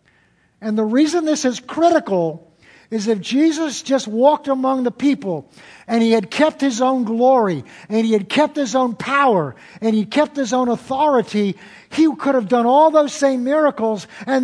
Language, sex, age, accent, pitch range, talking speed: English, male, 50-69, American, 195-255 Hz, 180 wpm